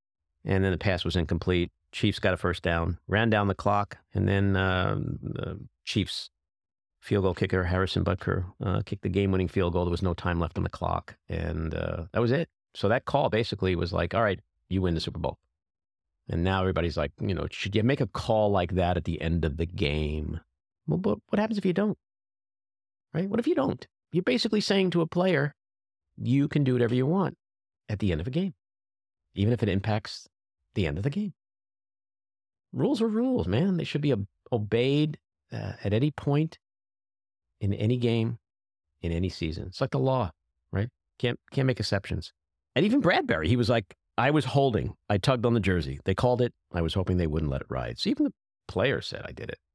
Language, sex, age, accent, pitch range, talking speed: English, male, 40-59, American, 85-120 Hz, 215 wpm